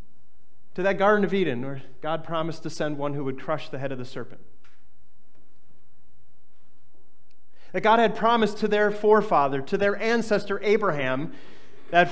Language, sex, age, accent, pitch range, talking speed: English, male, 30-49, American, 165-215 Hz, 155 wpm